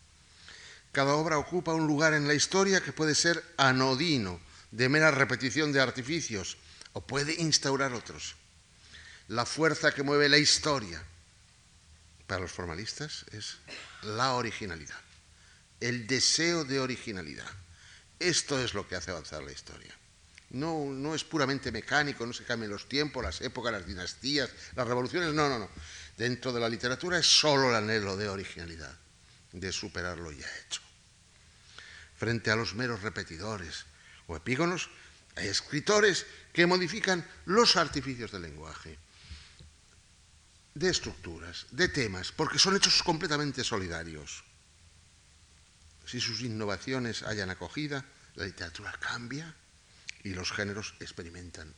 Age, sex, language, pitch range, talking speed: 60-79, male, Spanish, 85-140 Hz, 135 wpm